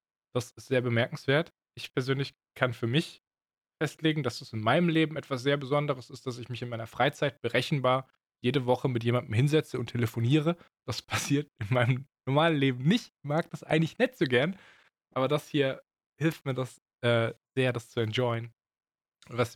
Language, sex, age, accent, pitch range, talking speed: German, male, 20-39, German, 120-140 Hz, 185 wpm